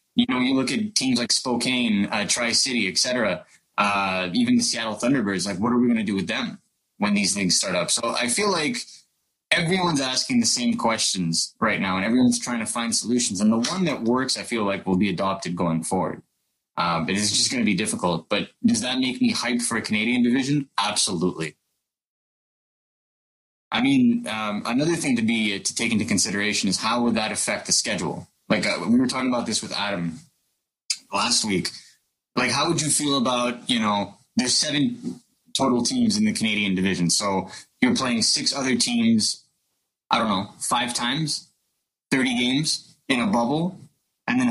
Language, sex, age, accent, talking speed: English, male, 20-39, American, 190 wpm